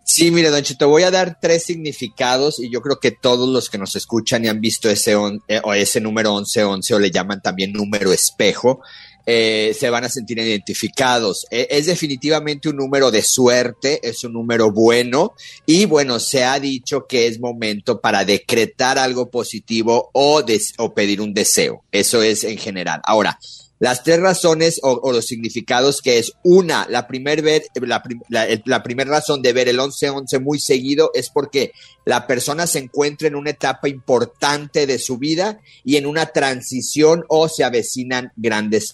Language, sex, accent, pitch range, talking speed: Spanish, male, Mexican, 115-150 Hz, 175 wpm